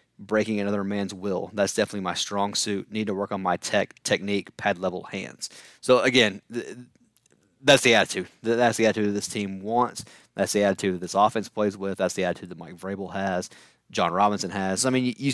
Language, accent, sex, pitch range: English, American, male, 95-110 Hz